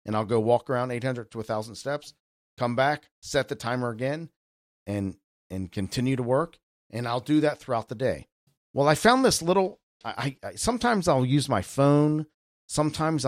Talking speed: 185 wpm